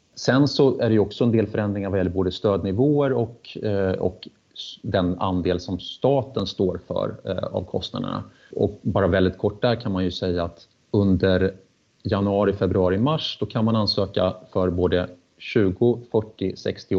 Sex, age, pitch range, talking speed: male, 30-49, 95-115 Hz, 160 wpm